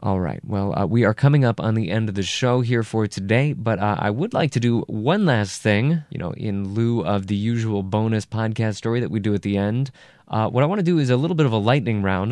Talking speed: 275 wpm